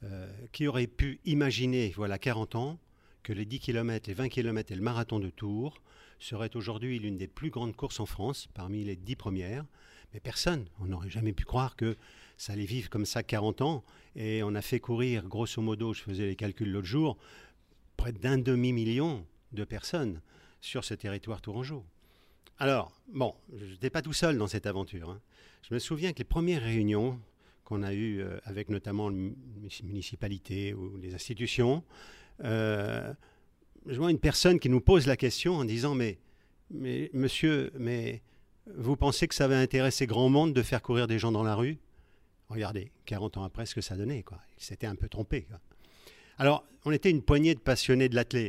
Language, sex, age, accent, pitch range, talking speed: French, male, 50-69, French, 100-130 Hz, 190 wpm